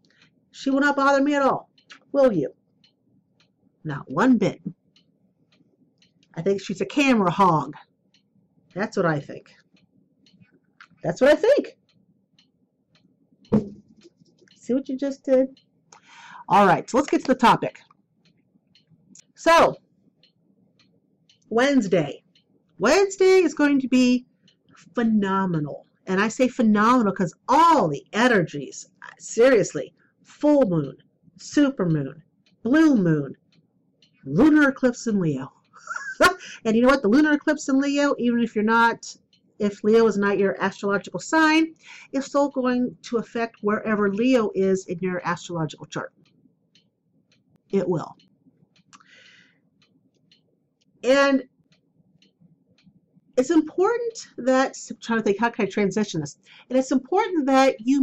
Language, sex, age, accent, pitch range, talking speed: English, female, 40-59, American, 195-280 Hz, 120 wpm